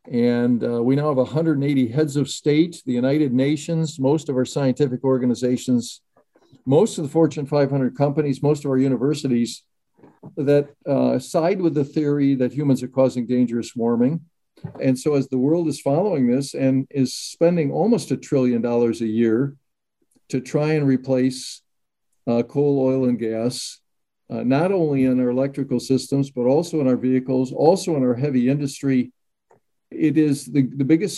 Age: 50-69